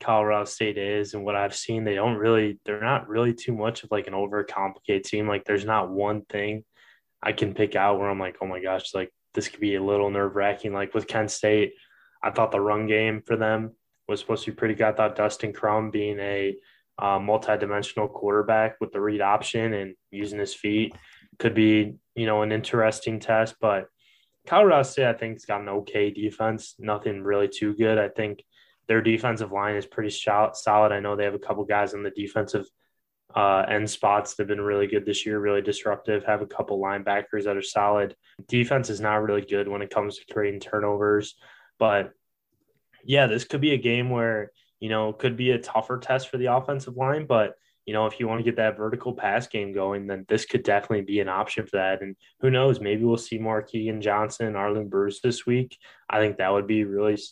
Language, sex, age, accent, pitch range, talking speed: English, male, 10-29, American, 100-110 Hz, 215 wpm